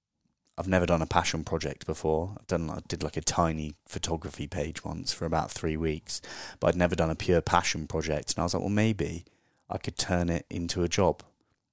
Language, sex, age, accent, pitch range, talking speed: English, male, 30-49, British, 85-100 Hz, 215 wpm